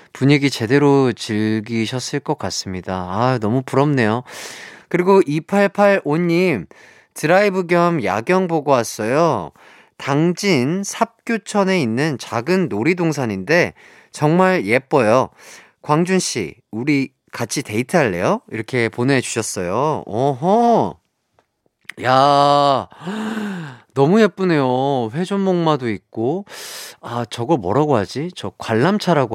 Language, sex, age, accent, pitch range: Korean, male, 40-59, native, 110-170 Hz